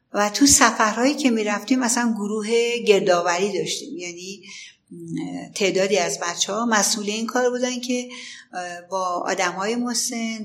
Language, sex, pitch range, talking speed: Persian, female, 180-235 Hz, 125 wpm